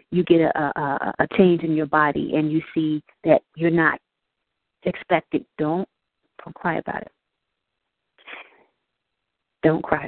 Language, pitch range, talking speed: English, 155-180 Hz, 130 wpm